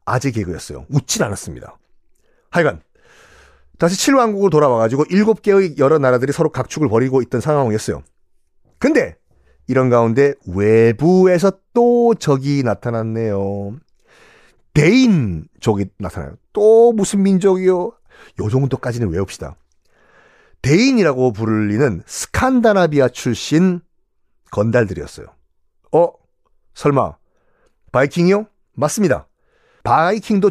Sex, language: male, Korean